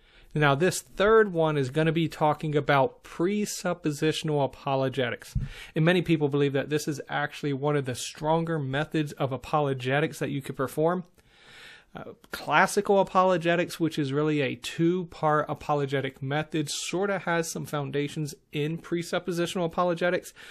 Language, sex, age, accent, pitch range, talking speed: English, male, 30-49, American, 140-170 Hz, 145 wpm